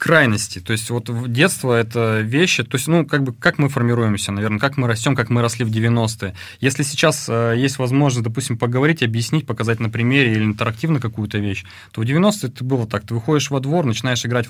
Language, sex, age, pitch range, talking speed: Russian, male, 20-39, 105-125 Hz, 210 wpm